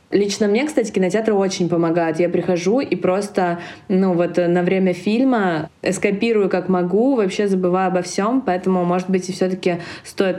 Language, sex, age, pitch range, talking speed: Russian, female, 20-39, 170-190 Hz, 160 wpm